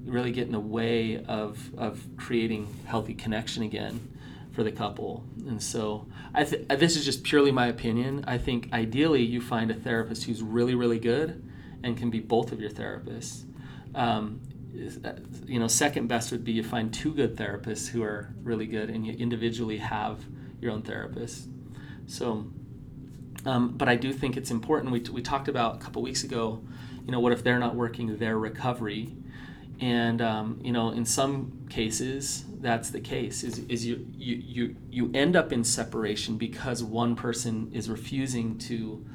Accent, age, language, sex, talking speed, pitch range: American, 30-49, English, male, 180 wpm, 115-130 Hz